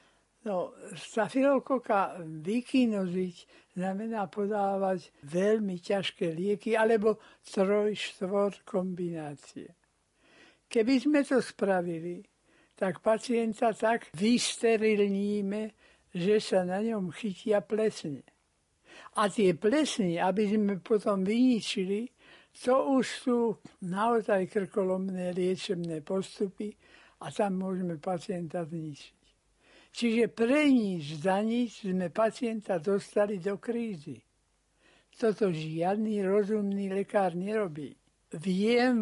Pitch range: 185-225 Hz